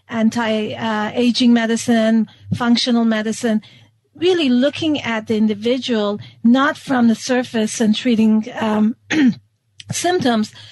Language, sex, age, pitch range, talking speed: English, female, 40-59, 210-250 Hz, 100 wpm